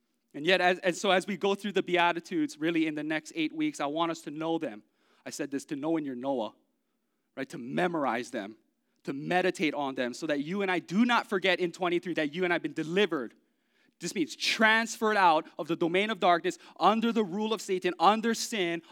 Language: English